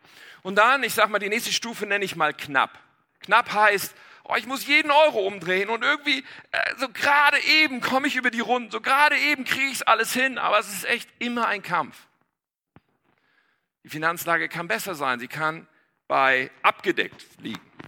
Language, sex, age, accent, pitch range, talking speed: German, male, 50-69, German, 155-225 Hz, 190 wpm